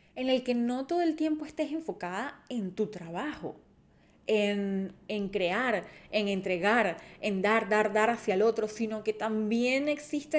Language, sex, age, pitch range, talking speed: Spanish, female, 20-39, 195-240 Hz, 160 wpm